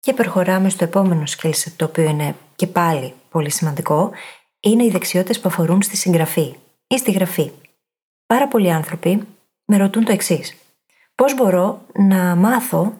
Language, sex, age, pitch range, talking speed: Greek, female, 20-39, 170-220 Hz, 150 wpm